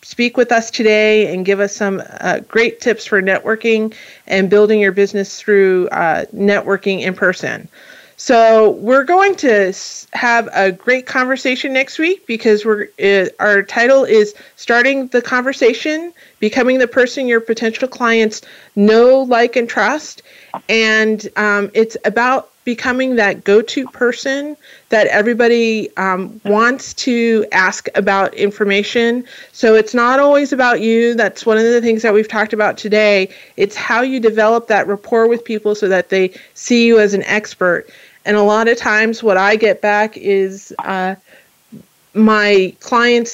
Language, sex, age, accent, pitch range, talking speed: English, female, 40-59, American, 205-240 Hz, 155 wpm